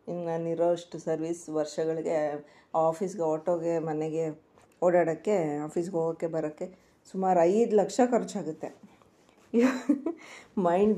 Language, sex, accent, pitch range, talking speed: Kannada, female, native, 160-190 Hz, 85 wpm